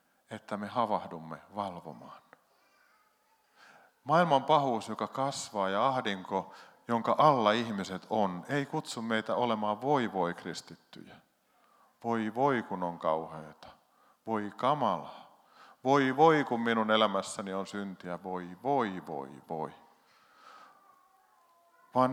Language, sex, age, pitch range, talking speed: Finnish, male, 50-69, 100-130 Hz, 110 wpm